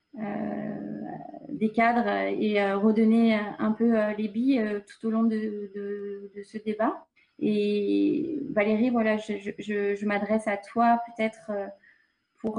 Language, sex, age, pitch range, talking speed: French, female, 30-49, 205-235 Hz, 150 wpm